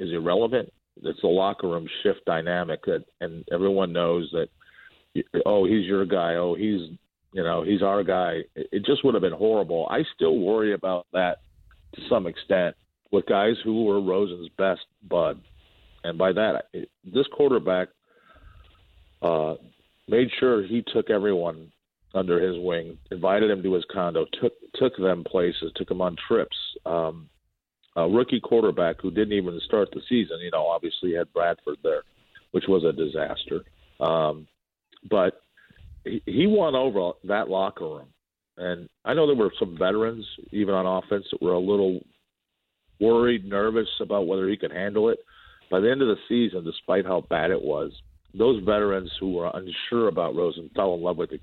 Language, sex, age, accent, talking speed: English, male, 50-69, American, 170 wpm